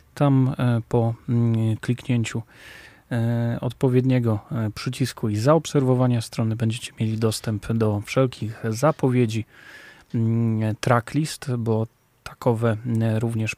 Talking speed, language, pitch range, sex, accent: 80 wpm, Polish, 110-130 Hz, male, native